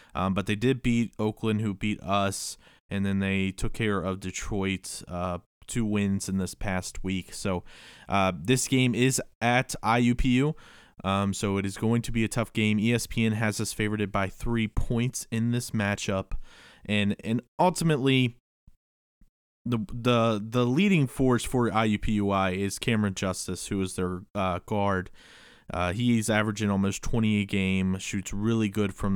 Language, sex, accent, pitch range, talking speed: English, male, American, 95-110 Hz, 165 wpm